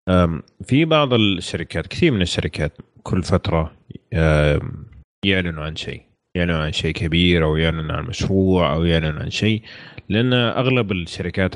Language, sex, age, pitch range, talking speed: Arabic, male, 30-49, 80-100 Hz, 135 wpm